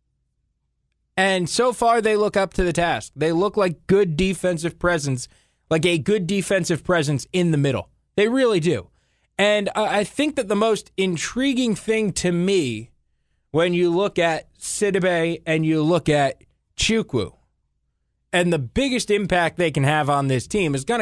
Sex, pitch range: male, 145-200 Hz